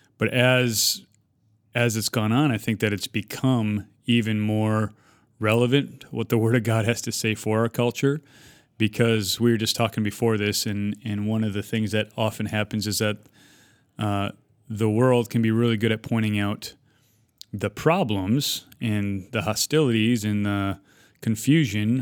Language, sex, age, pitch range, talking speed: English, male, 30-49, 105-115 Hz, 165 wpm